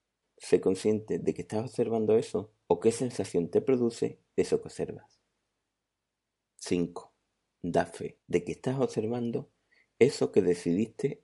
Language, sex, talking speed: Spanish, male, 135 wpm